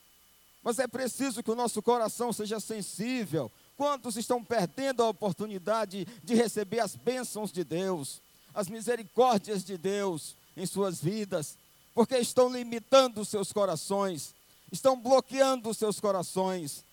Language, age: Portuguese, 50-69